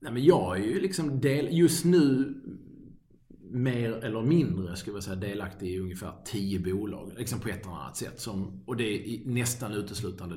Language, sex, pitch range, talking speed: English, male, 90-110 Hz, 180 wpm